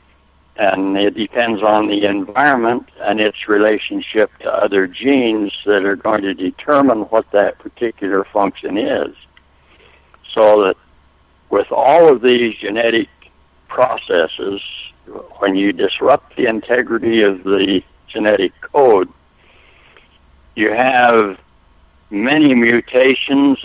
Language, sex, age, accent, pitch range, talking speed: English, male, 60-79, American, 75-120 Hz, 110 wpm